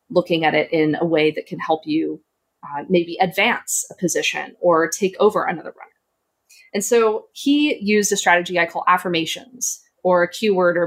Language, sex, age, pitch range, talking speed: English, female, 20-39, 170-205 Hz, 180 wpm